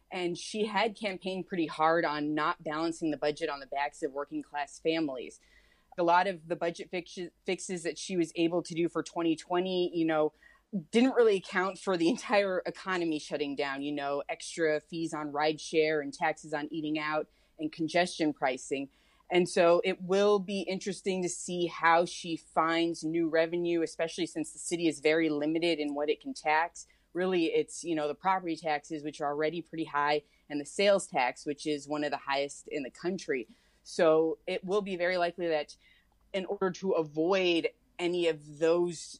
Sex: female